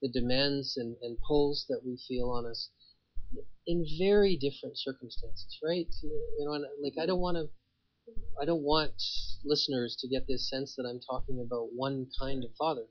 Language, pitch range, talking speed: English, 100-145 Hz, 170 wpm